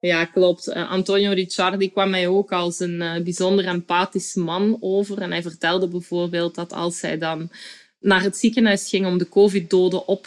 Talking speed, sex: 170 wpm, female